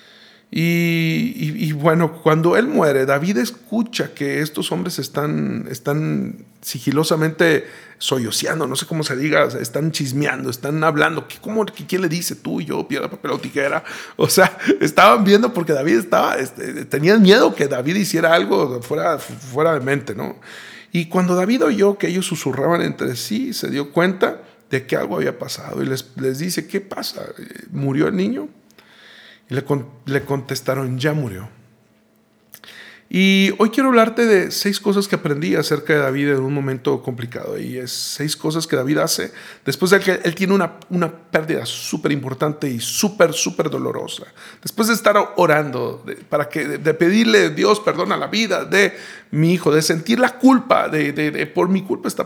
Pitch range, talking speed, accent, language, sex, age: 140-185 Hz, 180 wpm, Mexican, Spanish, male, 50-69